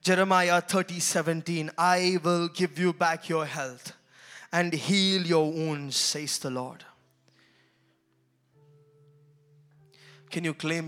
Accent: Indian